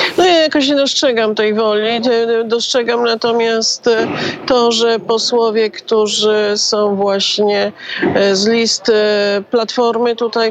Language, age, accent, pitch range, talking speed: Polish, 40-59, native, 200-235 Hz, 110 wpm